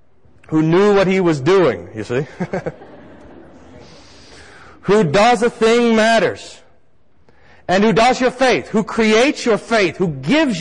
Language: English